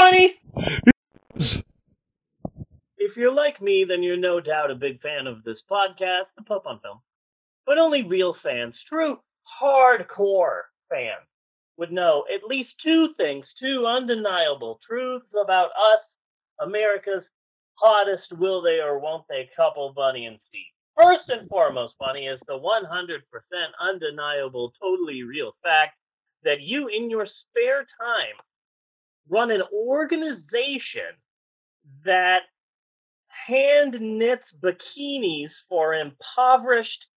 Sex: male